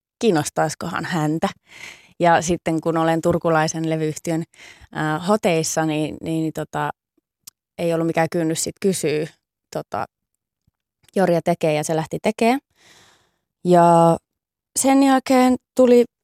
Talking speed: 110 wpm